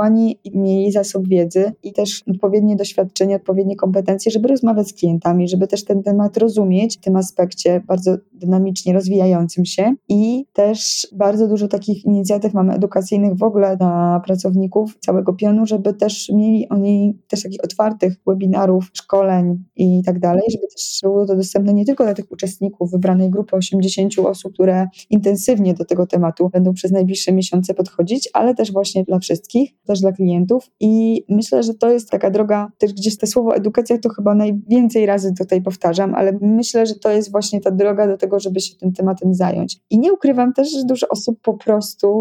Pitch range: 185-215 Hz